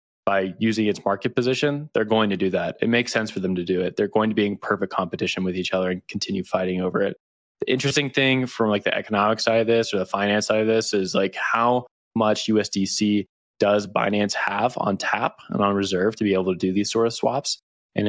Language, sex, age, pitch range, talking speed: English, male, 20-39, 95-115 Hz, 240 wpm